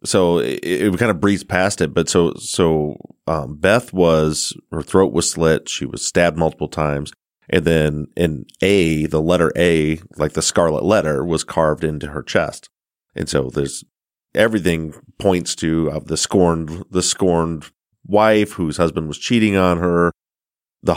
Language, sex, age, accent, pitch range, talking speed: English, male, 30-49, American, 75-85 Hz, 165 wpm